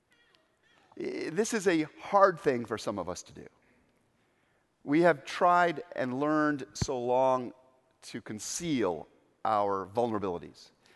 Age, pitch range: 50-69, 110-160 Hz